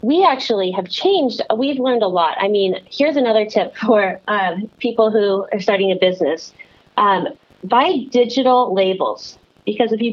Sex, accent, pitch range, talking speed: female, American, 185-240 Hz, 165 wpm